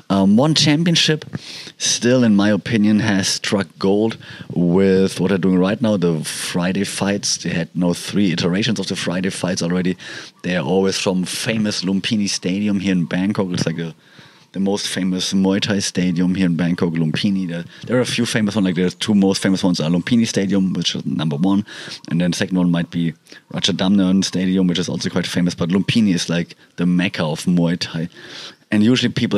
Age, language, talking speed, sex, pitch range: 30-49, English, 200 wpm, male, 90-105 Hz